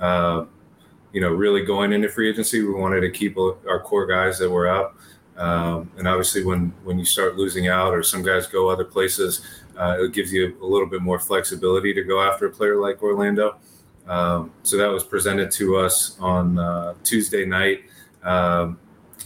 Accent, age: American, 30-49